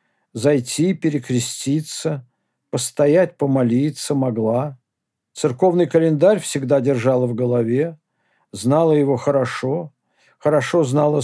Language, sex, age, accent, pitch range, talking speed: Russian, male, 50-69, native, 130-160 Hz, 85 wpm